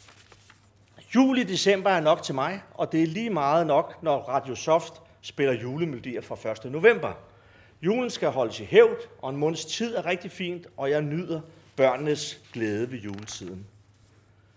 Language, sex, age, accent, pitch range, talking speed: Danish, male, 40-59, native, 110-175 Hz, 160 wpm